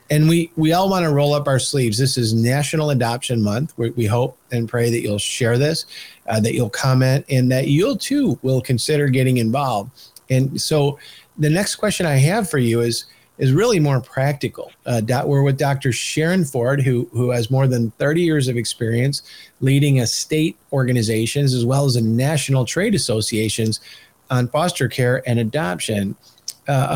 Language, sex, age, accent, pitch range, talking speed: English, male, 50-69, American, 115-140 Hz, 185 wpm